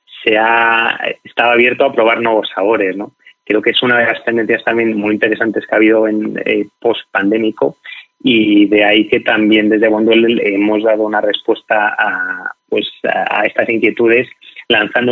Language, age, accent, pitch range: Spanish, 30-49, Spanish, 105-120 Hz